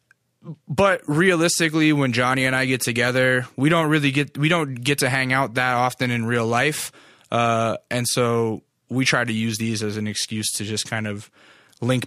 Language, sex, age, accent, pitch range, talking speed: English, male, 20-39, American, 110-130 Hz, 195 wpm